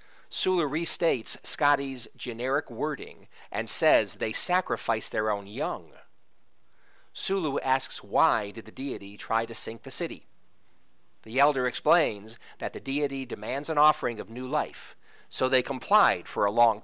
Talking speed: 145 wpm